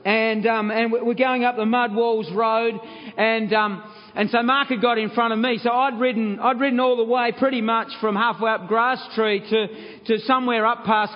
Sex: male